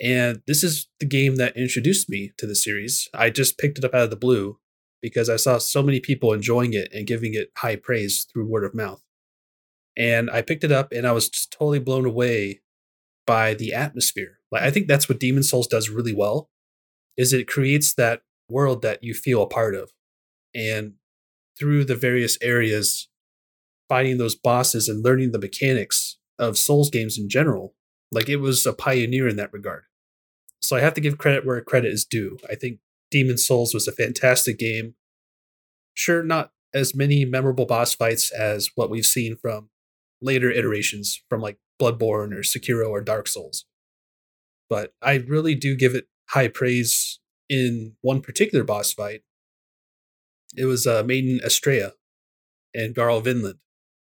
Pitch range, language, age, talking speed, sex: 110-135 Hz, English, 30-49, 175 wpm, male